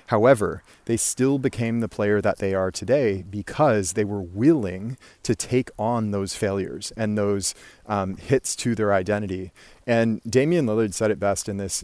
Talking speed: 170 wpm